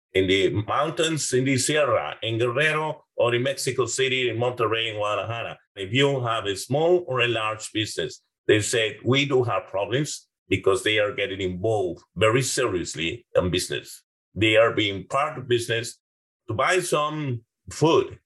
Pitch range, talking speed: 110-165 Hz, 165 wpm